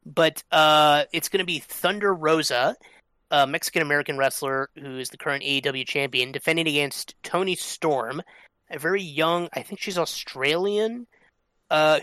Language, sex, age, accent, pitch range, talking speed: English, male, 30-49, American, 140-175 Hz, 145 wpm